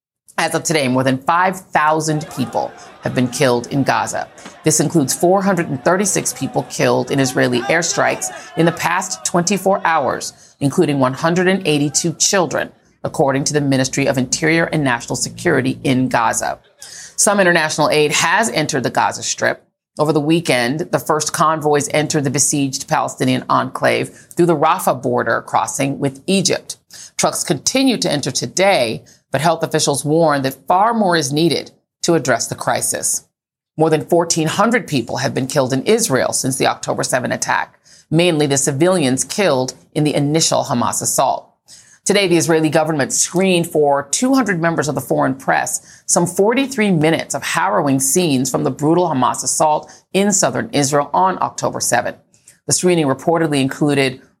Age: 40-59